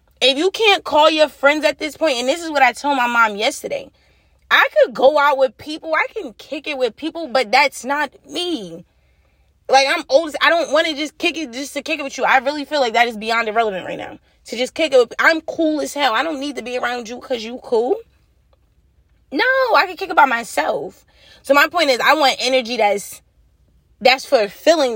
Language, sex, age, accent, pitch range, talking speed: English, female, 20-39, American, 245-315 Hz, 230 wpm